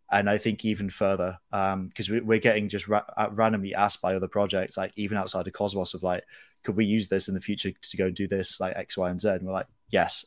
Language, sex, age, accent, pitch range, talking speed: English, male, 20-39, British, 95-110 Hz, 255 wpm